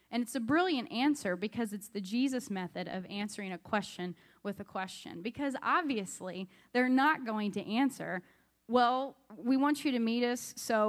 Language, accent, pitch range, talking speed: English, American, 185-245 Hz, 175 wpm